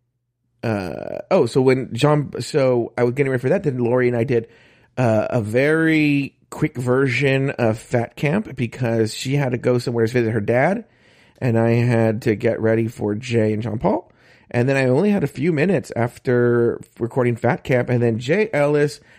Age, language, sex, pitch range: 40-59, English, male, 115-145 Hz